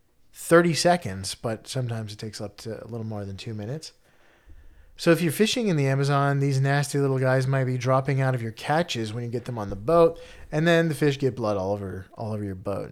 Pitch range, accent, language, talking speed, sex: 120-155 Hz, American, English, 235 wpm, male